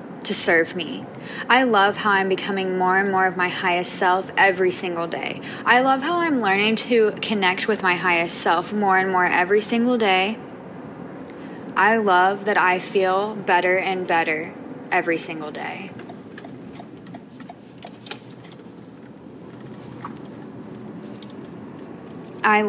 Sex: female